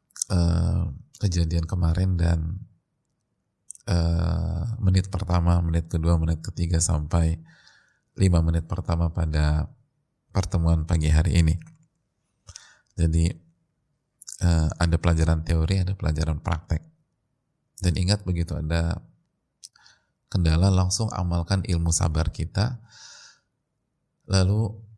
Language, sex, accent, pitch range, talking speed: Indonesian, male, native, 85-105 Hz, 95 wpm